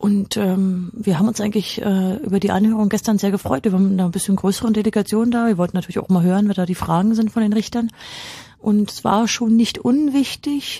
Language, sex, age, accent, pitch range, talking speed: German, female, 30-49, German, 165-210 Hz, 235 wpm